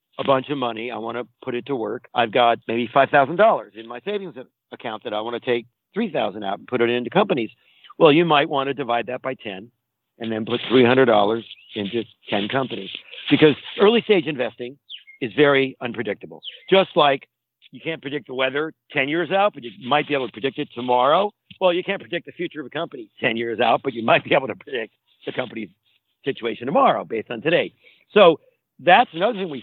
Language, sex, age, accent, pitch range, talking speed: English, male, 50-69, American, 120-165 Hz, 220 wpm